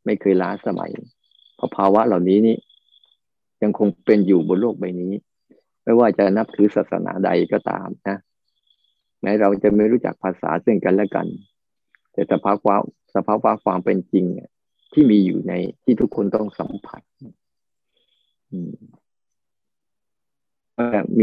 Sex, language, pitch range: male, Thai, 100-115 Hz